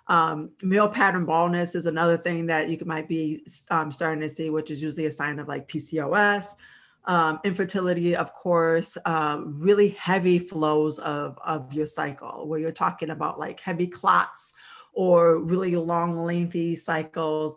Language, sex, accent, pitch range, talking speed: English, female, American, 155-175 Hz, 160 wpm